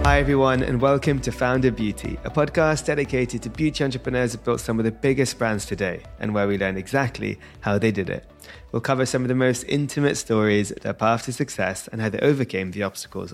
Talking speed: 215 wpm